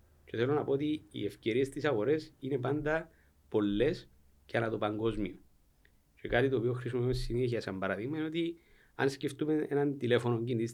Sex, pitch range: male, 105-140 Hz